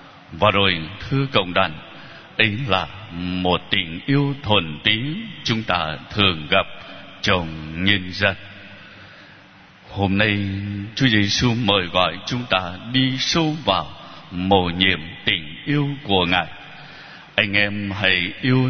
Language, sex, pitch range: Vietnamese, male, 90-130 Hz